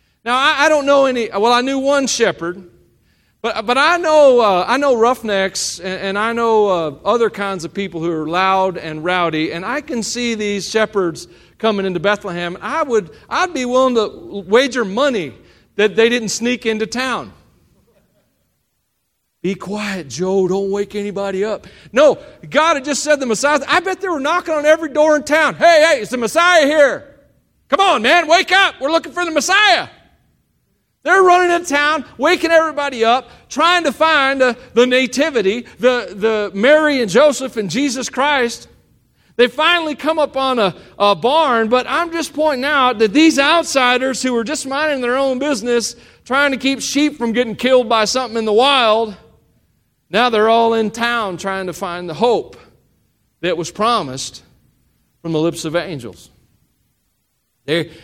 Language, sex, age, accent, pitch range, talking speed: English, male, 40-59, American, 200-290 Hz, 175 wpm